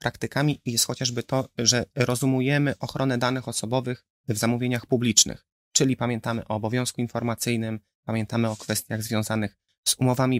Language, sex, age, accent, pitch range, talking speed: Polish, male, 30-49, native, 115-135 Hz, 135 wpm